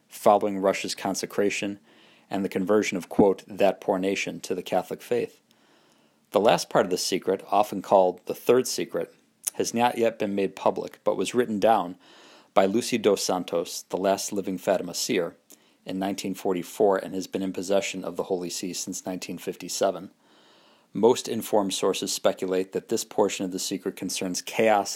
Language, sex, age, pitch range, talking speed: English, male, 40-59, 90-100 Hz, 170 wpm